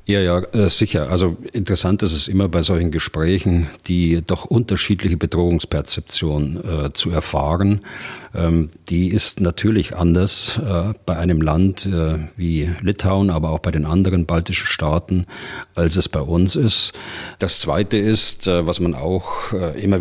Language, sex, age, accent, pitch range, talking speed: German, male, 40-59, German, 80-95 Hz, 135 wpm